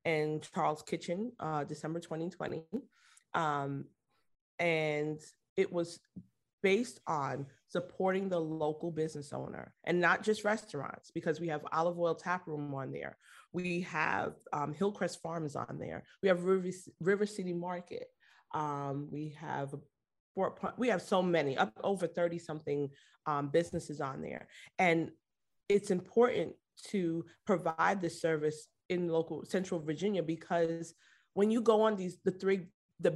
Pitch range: 155-195 Hz